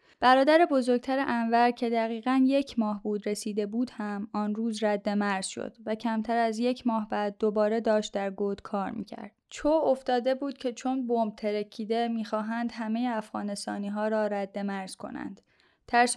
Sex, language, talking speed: female, Persian, 165 wpm